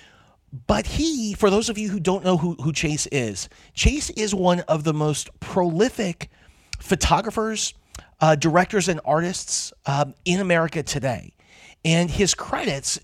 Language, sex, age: English, male, 30-49